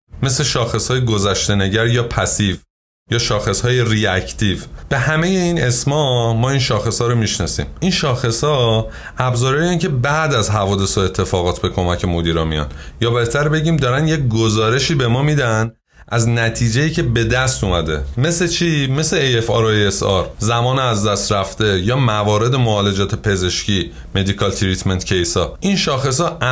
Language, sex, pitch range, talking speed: Persian, male, 105-140 Hz, 150 wpm